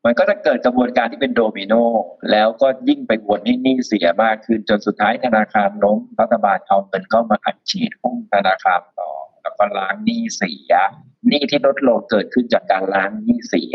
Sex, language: male, Thai